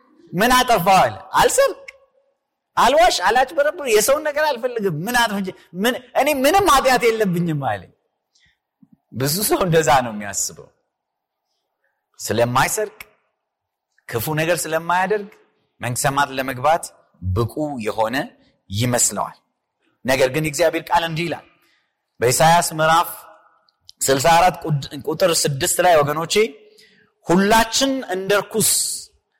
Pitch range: 165-250 Hz